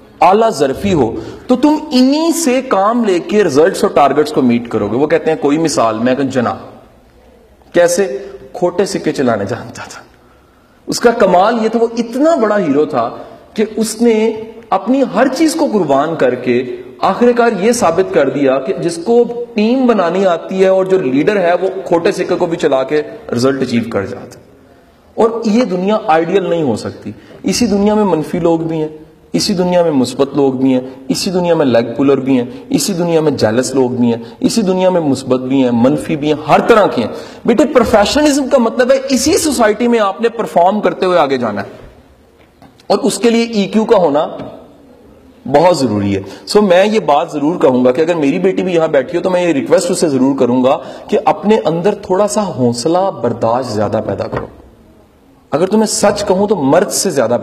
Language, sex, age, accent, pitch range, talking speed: English, male, 40-59, Indian, 140-220 Hz, 160 wpm